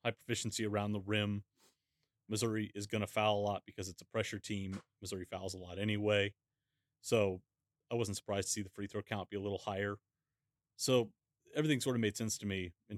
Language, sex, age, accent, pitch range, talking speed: English, male, 30-49, American, 100-120 Hz, 210 wpm